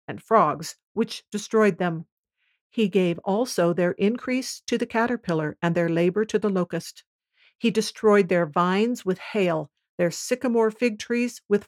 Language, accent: English, American